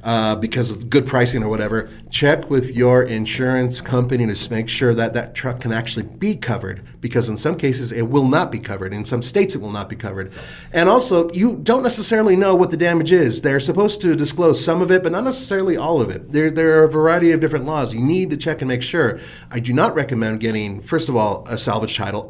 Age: 30-49